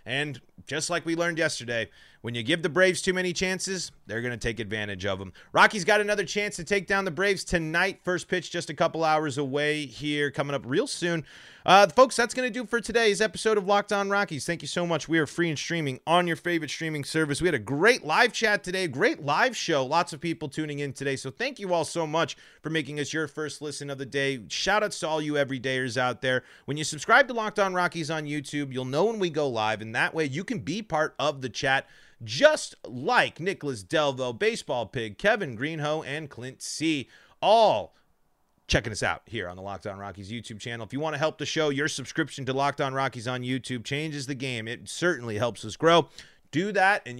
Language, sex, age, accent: English, male, 30-49, American